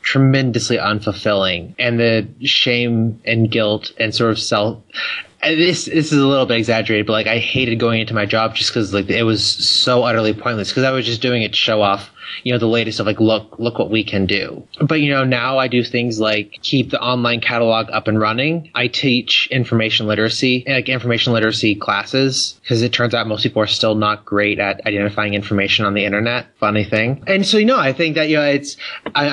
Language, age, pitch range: English, 20-39, 105-125 Hz